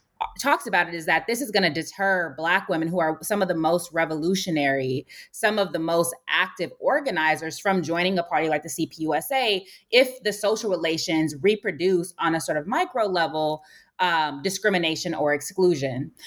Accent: American